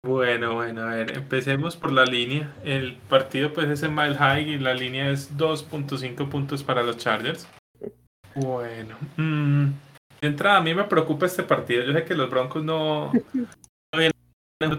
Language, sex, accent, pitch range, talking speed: Spanish, male, Colombian, 125-150 Hz, 160 wpm